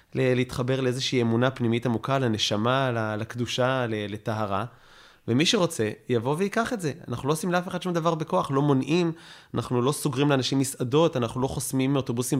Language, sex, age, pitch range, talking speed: Hebrew, male, 20-39, 115-140 Hz, 160 wpm